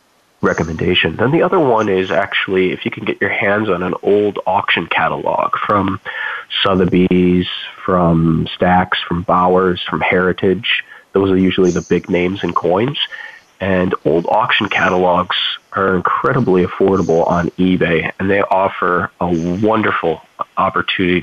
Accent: American